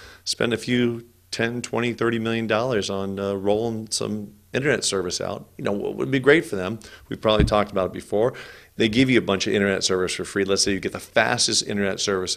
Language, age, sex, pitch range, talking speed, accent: English, 40-59, male, 95-120 Hz, 230 wpm, American